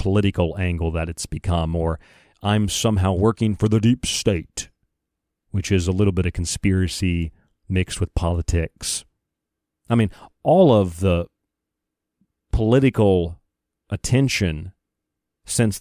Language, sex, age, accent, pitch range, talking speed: English, male, 40-59, American, 90-105 Hz, 120 wpm